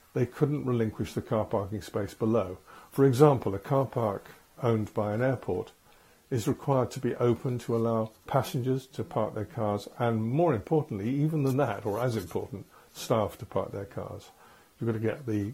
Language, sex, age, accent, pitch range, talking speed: English, male, 50-69, British, 110-135 Hz, 185 wpm